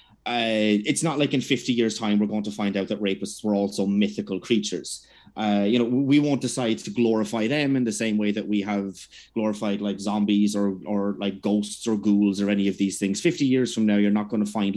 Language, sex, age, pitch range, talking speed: English, male, 30-49, 105-125 Hz, 235 wpm